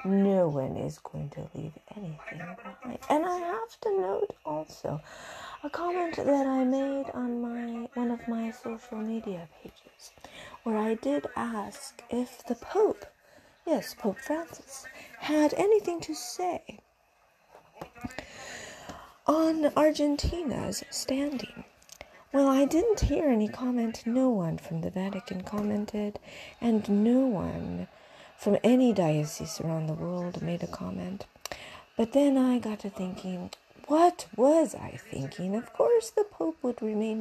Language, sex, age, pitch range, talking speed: English, female, 40-59, 205-300 Hz, 135 wpm